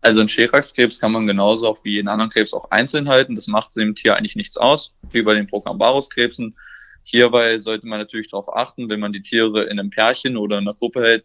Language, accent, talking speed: German, German, 230 wpm